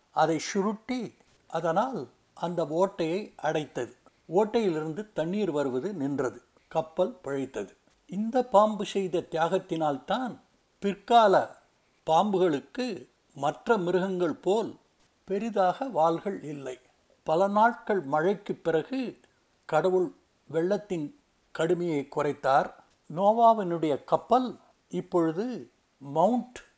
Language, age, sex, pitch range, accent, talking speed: Tamil, 60-79, male, 155-200 Hz, native, 80 wpm